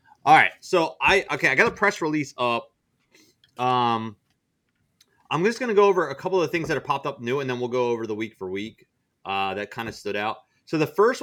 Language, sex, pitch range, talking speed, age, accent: English, male, 120-160 Hz, 240 wpm, 30-49, American